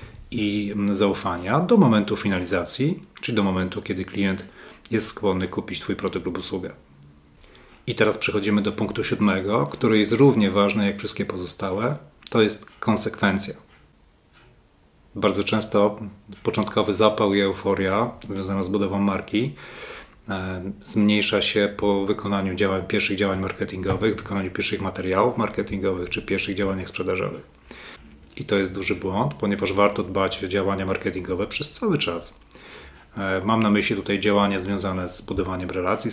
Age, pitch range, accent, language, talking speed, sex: 30-49, 95-105 Hz, native, Polish, 135 wpm, male